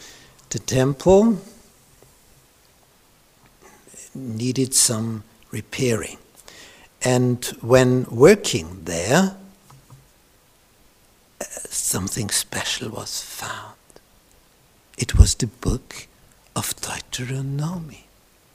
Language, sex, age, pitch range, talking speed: English, male, 60-79, 110-160 Hz, 60 wpm